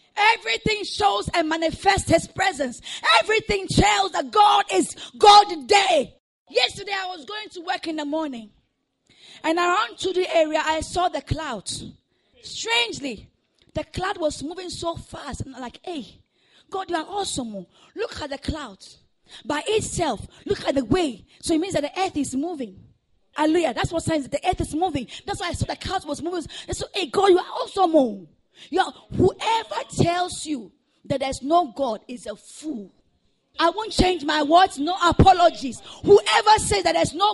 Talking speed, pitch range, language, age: 185 wpm, 305-415 Hz, English, 20-39